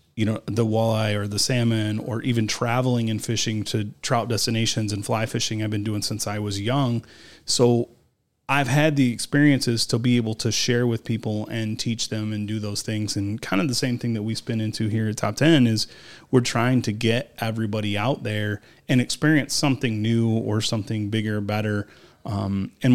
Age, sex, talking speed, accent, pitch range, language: 30-49, male, 200 wpm, American, 105-125 Hz, English